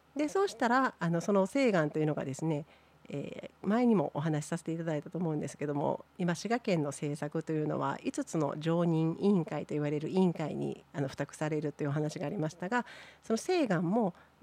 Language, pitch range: Japanese, 155-230 Hz